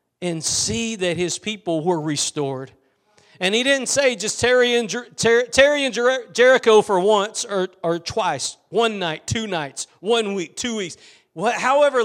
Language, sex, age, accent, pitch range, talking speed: English, male, 40-59, American, 185-260 Hz, 150 wpm